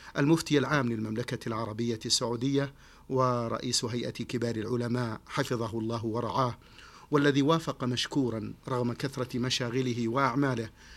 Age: 50-69